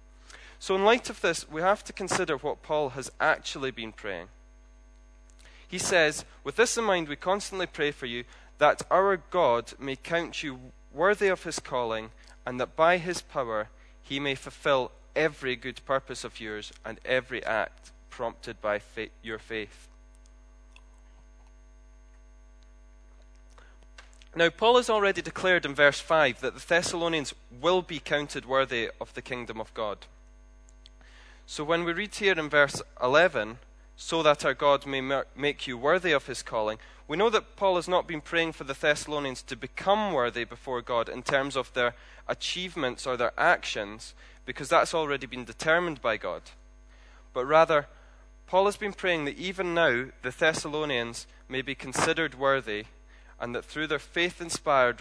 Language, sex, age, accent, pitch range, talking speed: English, male, 20-39, British, 105-165 Hz, 160 wpm